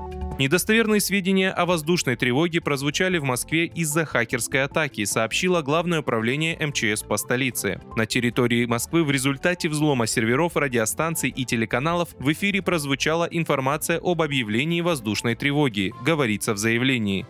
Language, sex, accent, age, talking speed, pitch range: Russian, male, native, 20-39, 130 wpm, 115-165 Hz